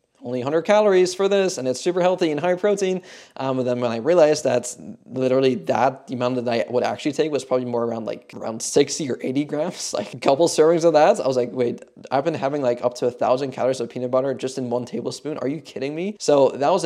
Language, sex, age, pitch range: English, male, 20-39, 120-135 Hz